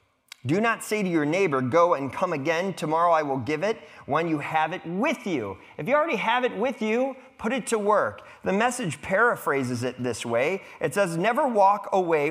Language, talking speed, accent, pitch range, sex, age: English, 210 wpm, American, 140-215 Hz, male, 30-49